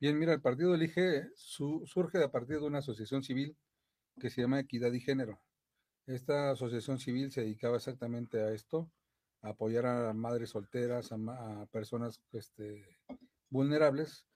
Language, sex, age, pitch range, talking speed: Spanish, male, 40-59, 115-145 Hz, 165 wpm